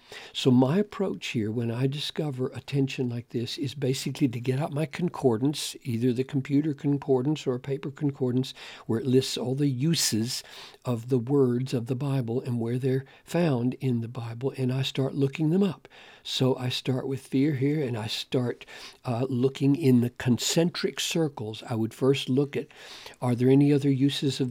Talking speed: 185 wpm